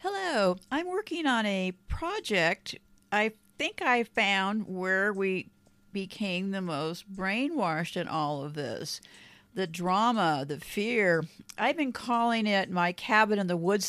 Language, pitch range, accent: English, 180-210 Hz, American